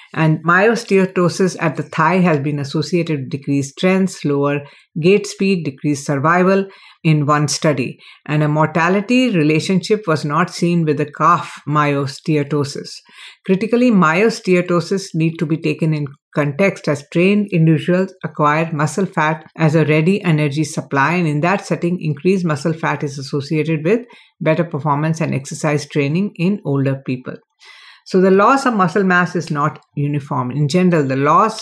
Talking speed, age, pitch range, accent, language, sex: 150 wpm, 60-79, 150-185 Hz, Indian, English, female